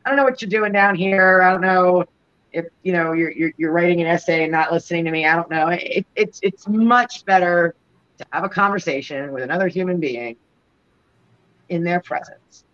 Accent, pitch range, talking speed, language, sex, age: American, 155-220 Hz, 205 wpm, English, female, 40-59